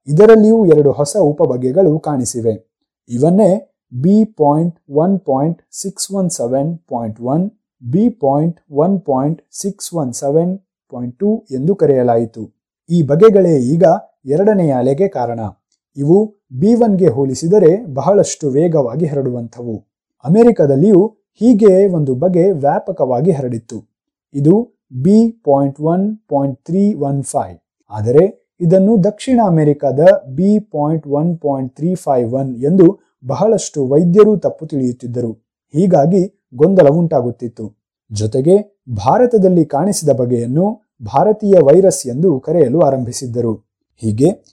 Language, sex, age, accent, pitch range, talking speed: Kannada, male, 30-49, native, 130-195 Hz, 80 wpm